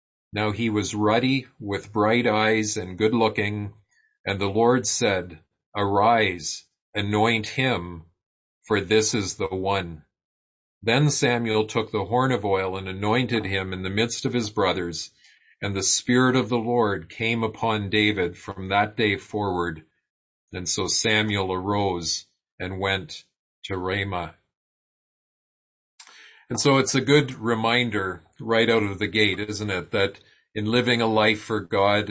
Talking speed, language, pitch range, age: 145 wpm, English, 100-115 Hz, 40-59